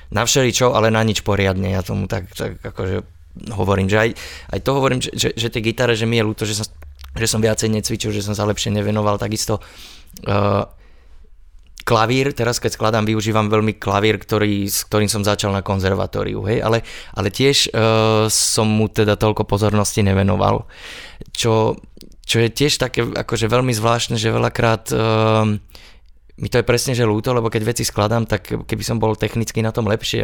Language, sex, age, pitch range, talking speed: Slovak, male, 20-39, 100-115 Hz, 185 wpm